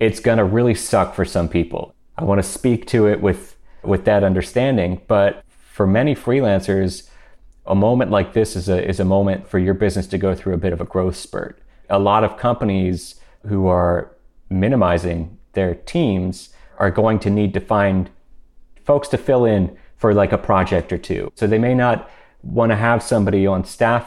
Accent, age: American, 30-49